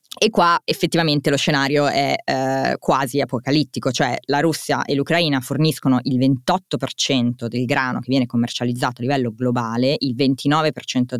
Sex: female